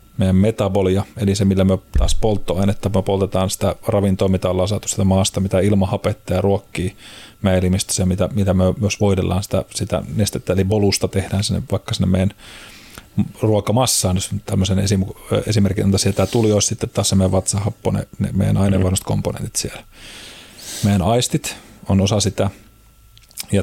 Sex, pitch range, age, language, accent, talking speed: male, 95-105 Hz, 30-49, Finnish, native, 155 wpm